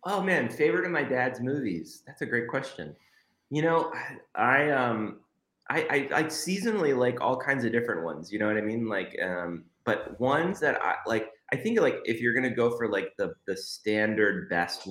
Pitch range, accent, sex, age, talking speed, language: 85-125 Hz, American, male, 20-39, 205 wpm, English